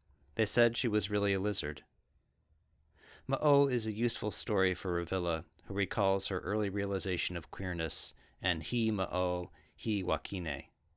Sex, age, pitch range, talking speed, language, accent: male, 40-59, 80-105 Hz, 140 wpm, English, American